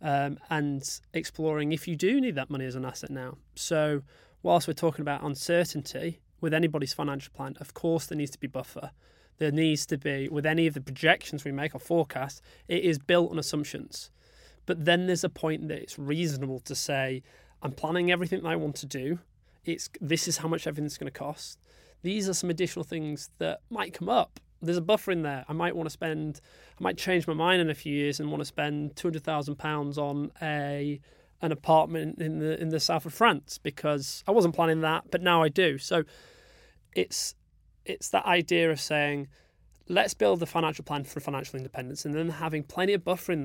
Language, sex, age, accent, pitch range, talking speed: English, male, 20-39, British, 145-170 Hz, 210 wpm